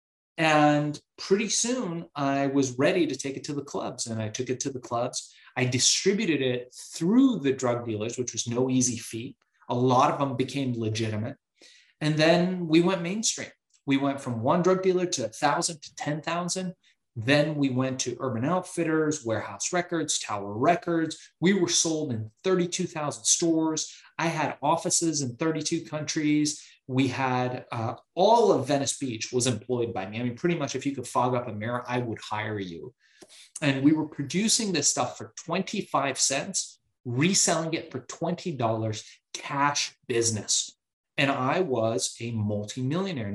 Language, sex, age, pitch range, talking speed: English, male, 30-49, 120-165 Hz, 165 wpm